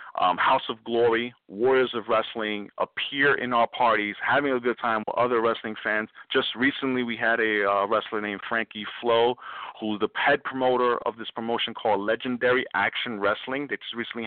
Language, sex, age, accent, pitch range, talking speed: English, male, 40-59, American, 110-140 Hz, 180 wpm